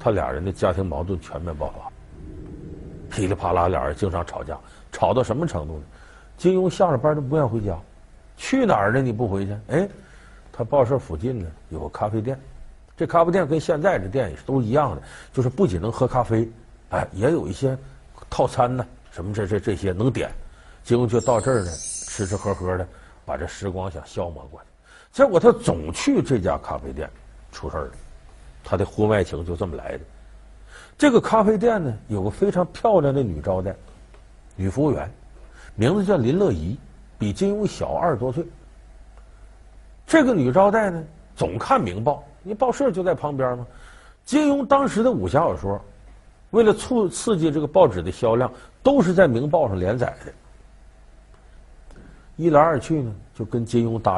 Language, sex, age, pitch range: Chinese, male, 50-69, 95-155 Hz